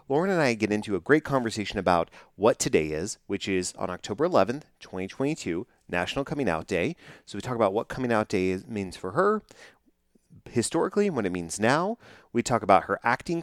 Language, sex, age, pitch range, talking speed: English, male, 30-49, 95-130 Hz, 195 wpm